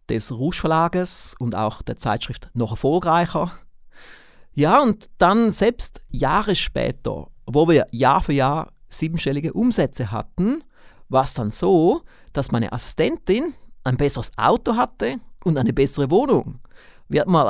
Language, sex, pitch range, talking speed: German, male, 120-180 Hz, 135 wpm